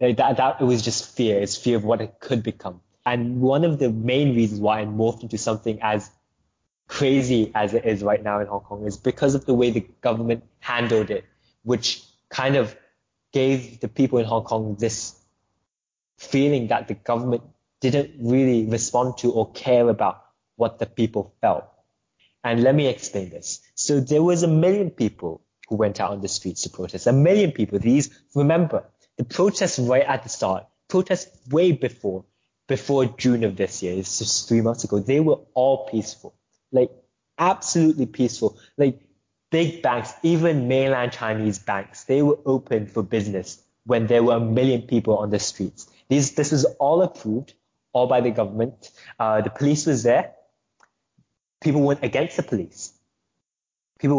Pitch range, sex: 110-135 Hz, male